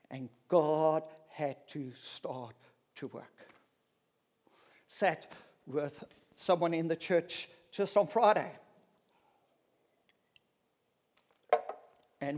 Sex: male